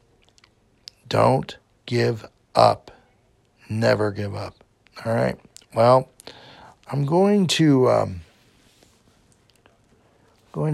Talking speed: 80 wpm